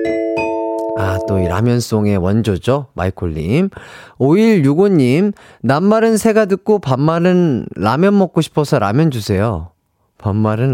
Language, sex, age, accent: Korean, male, 30-49, native